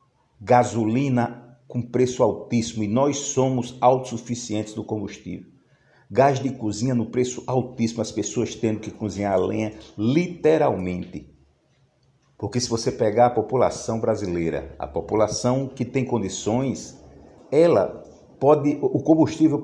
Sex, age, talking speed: male, 50-69, 115 wpm